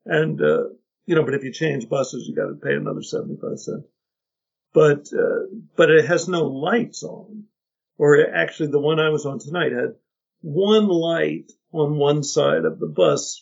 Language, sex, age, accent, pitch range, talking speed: English, male, 50-69, American, 155-220 Hz, 185 wpm